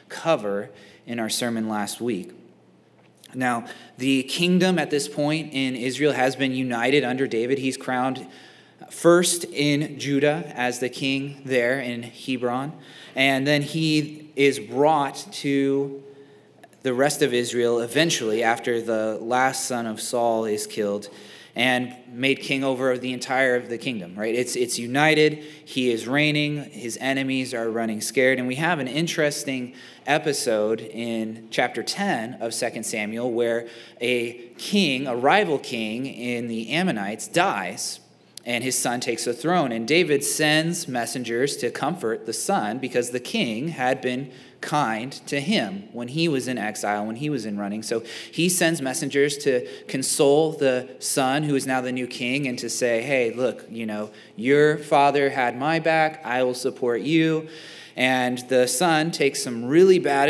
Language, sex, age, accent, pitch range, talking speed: English, male, 30-49, American, 120-145 Hz, 160 wpm